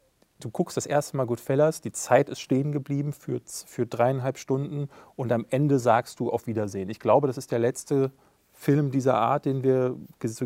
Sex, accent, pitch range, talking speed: male, German, 115-130 Hz, 200 wpm